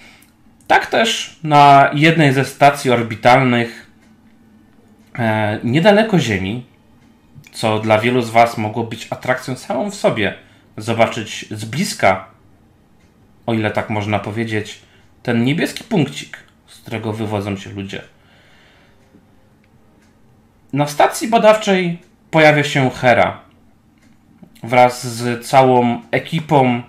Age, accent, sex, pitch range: 30-49, native, male, 110-150 Hz